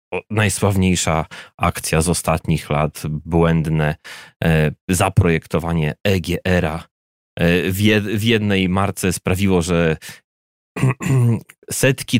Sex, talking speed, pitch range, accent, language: male, 70 wpm, 85-115 Hz, native, Polish